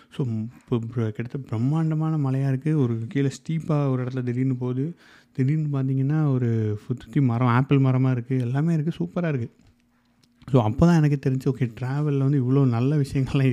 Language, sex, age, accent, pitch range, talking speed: Tamil, male, 30-49, native, 120-145 Hz, 165 wpm